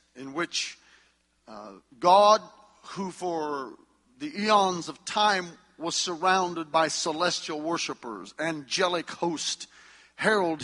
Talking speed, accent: 100 wpm, American